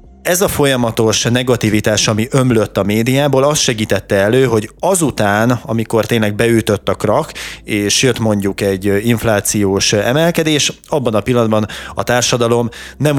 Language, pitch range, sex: Hungarian, 100-120 Hz, male